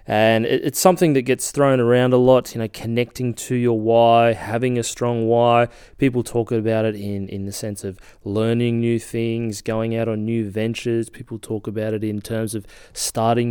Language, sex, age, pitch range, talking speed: English, male, 20-39, 110-125 Hz, 195 wpm